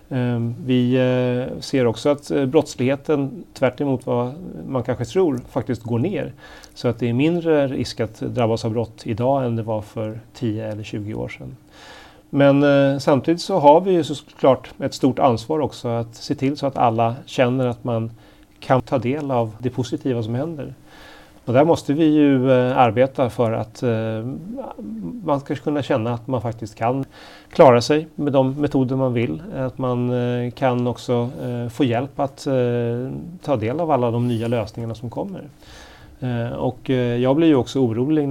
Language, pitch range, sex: Swedish, 115-135 Hz, male